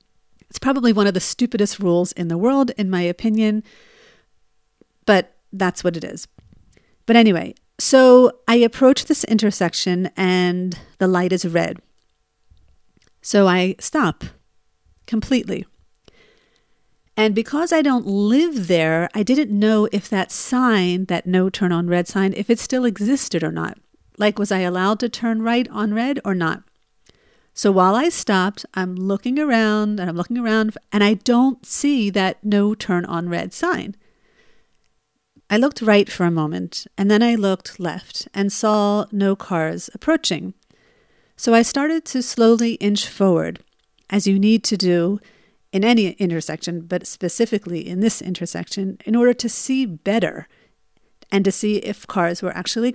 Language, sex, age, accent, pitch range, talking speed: English, female, 50-69, American, 185-235 Hz, 155 wpm